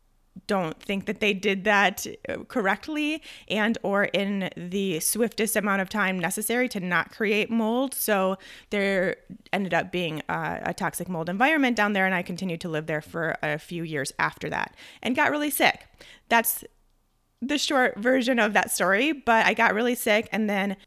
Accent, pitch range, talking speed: American, 175-210 Hz, 175 wpm